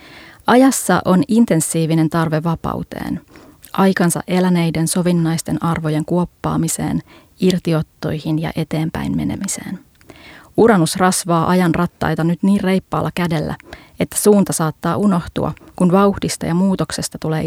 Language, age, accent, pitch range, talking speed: Finnish, 30-49, native, 160-190 Hz, 105 wpm